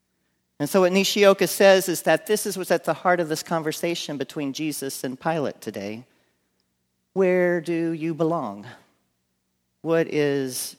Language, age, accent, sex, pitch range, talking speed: English, 40-59, American, male, 110-175 Hz, 150 wpm